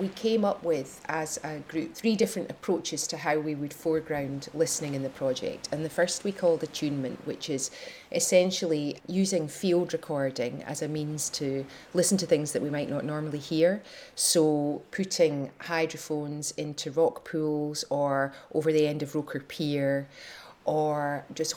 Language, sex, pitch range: English, female, 145-170 Hz